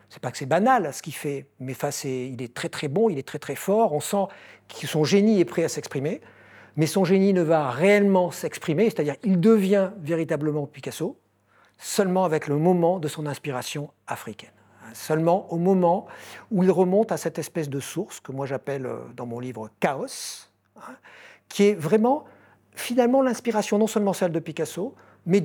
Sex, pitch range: male, 145-205 Hz